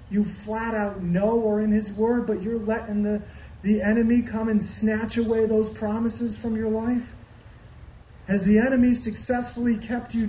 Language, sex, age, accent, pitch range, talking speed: English, male, 30-49, American, 145-220 Hz, 170 wpm